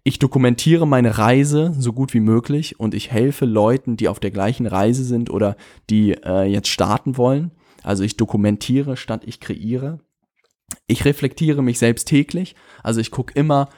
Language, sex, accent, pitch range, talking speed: German, male, German, 115-135 Hz, 170 wpm